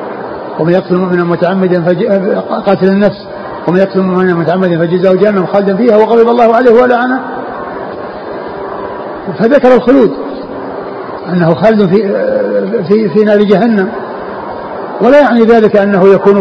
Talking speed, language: 115 wpm, Arabic